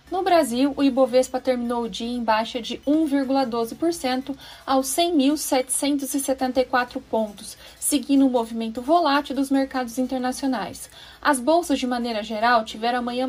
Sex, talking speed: female, 130 wpm